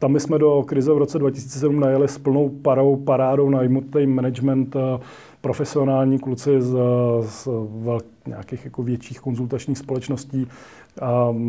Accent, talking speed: native, 135 wpm